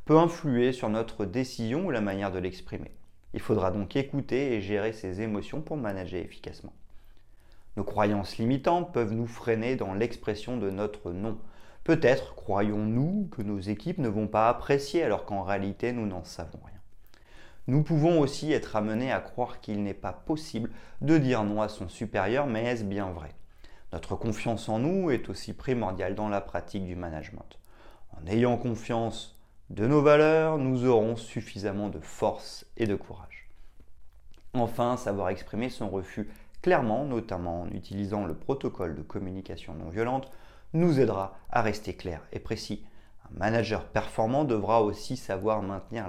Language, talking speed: French, 160 wpm